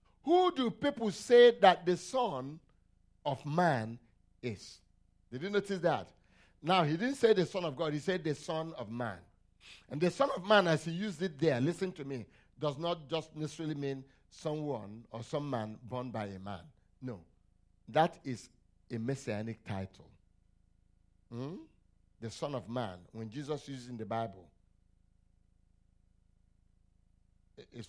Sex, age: male, 60-79